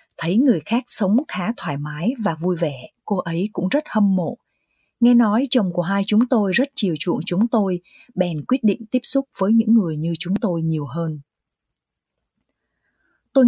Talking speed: 185 wpm